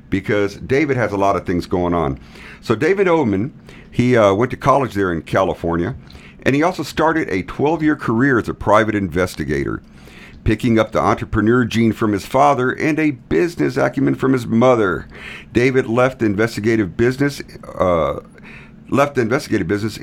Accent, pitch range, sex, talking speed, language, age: American, 85-120 Hz, male, 170 wpm, English, 50-69